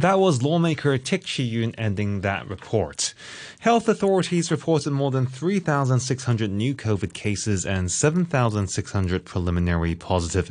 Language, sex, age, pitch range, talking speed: English, male, 20-39, 90-135 Hz, 120 wpm